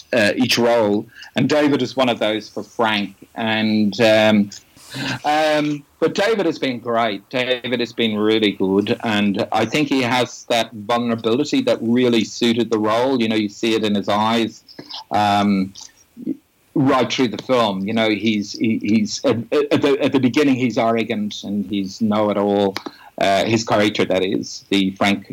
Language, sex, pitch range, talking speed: English, male, 105-130 Hz, 170 wpm